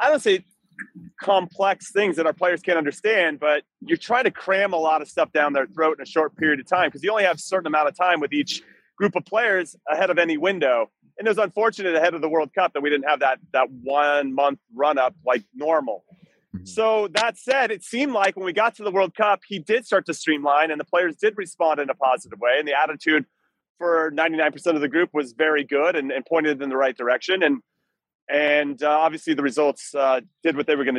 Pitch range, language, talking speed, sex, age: 150-195 Hz, English, 240 wpm, male, 30-49